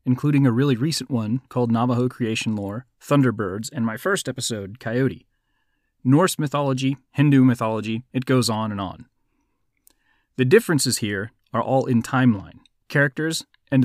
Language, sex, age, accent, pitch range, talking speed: English, male, 30-49, American, 115-140 Hz, 145 wpm